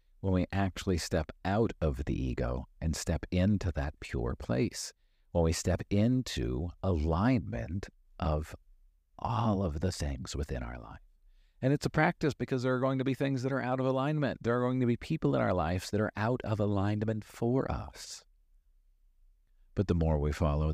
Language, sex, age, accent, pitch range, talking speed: English, male, 50-69, American, 70-100 Hz, 185 wpm